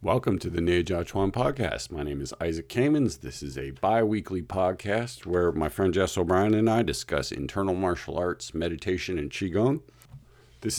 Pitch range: 80-100 Hz